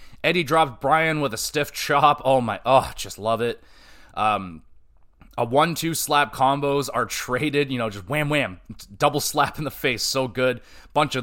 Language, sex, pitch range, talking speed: English, male, 120-155 Hz, 185 wpm